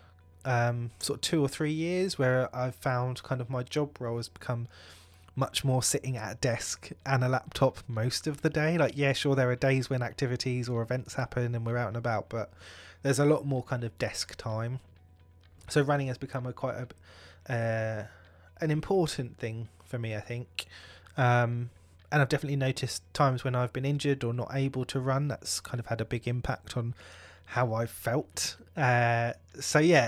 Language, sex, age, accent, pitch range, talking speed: English, male, 20-39, British, 115-140 Hz, 195 wpm